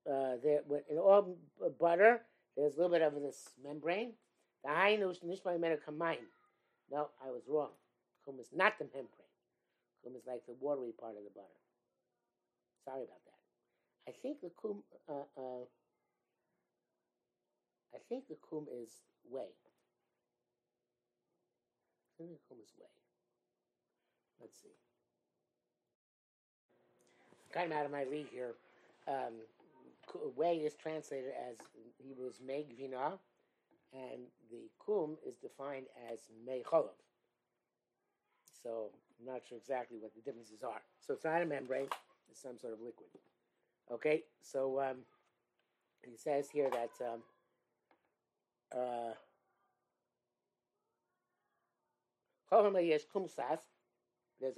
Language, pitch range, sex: English, 115-160 Hz, male